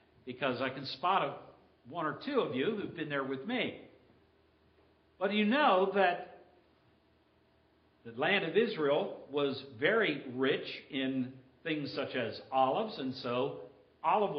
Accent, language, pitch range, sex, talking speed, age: American, English, 135-200 Hz, male, 140 wpm, 60-79